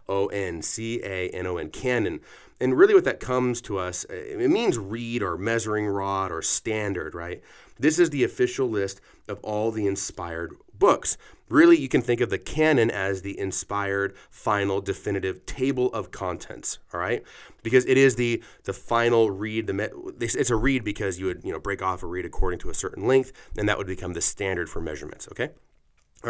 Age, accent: 30-49, American